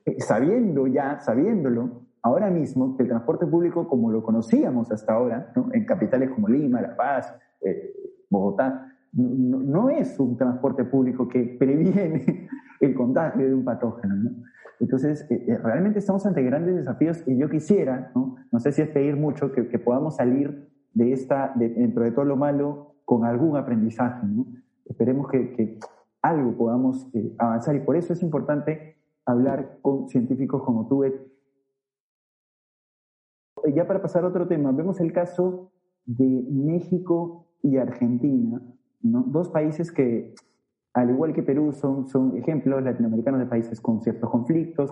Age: 30-49